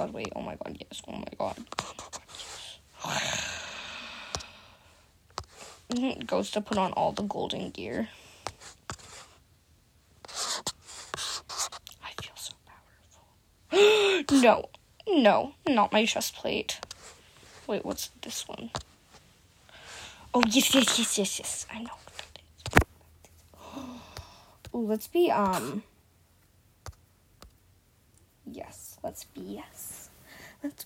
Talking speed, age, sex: 95 wpm, 10-29, female